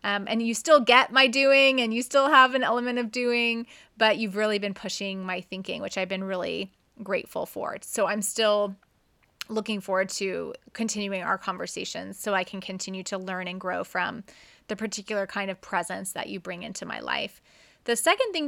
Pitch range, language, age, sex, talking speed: 195-235 Hz, English, 30-49, female, 195 wpm